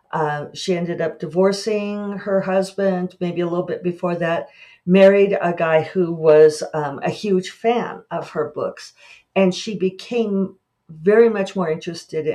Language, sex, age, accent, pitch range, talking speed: English, female, 50-69, American, 165-195 Hz, 155 wpm